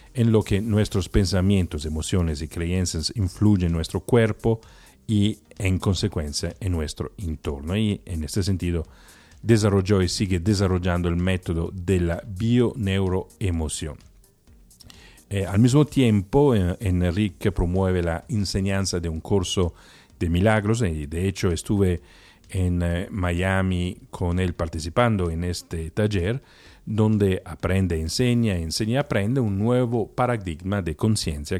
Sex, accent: male, Italian